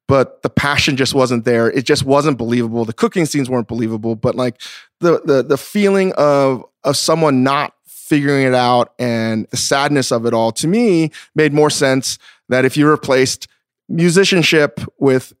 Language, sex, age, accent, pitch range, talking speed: English, male, 20-39, American, 115-150 Hz, 175 wpm